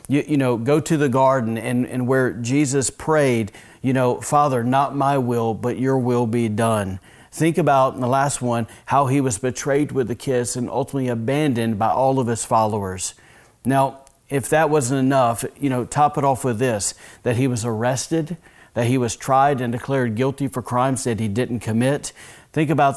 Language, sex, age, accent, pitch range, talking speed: English, male, 40-59, American, 120-140 Hz, 195 wpm